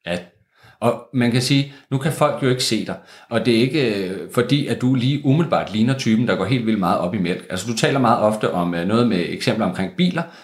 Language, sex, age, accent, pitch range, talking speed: Danish, male, 30-49, native, 110-145 Hz, 245 wpm